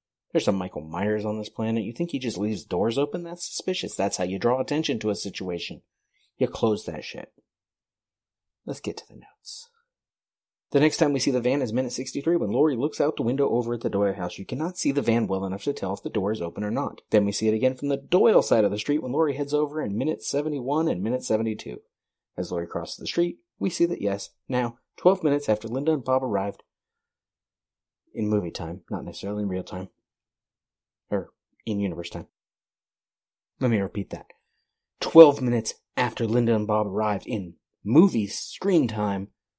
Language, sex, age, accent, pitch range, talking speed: English, male, 30-49, American, 100-130 Hz, 205 wpm